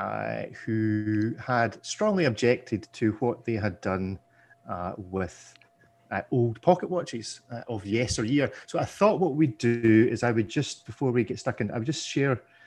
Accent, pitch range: British, 110-140 Hz